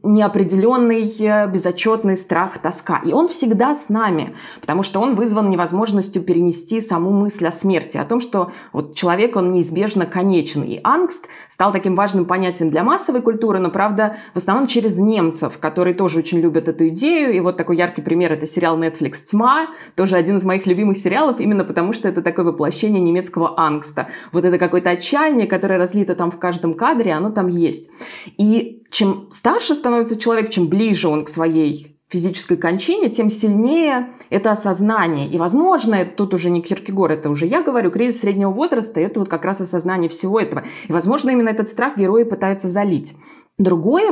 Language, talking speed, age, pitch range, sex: Russian, 175 wpm, 20-39, 175-225 Hz, female